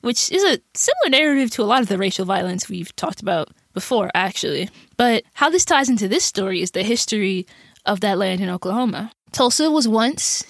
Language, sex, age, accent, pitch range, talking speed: English, female, 20-39, American, 195-245 Hz, 200 wpm